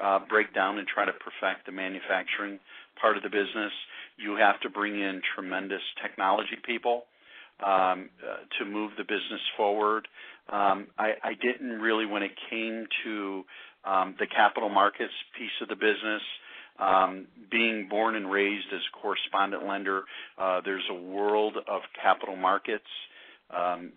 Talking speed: 155 wpm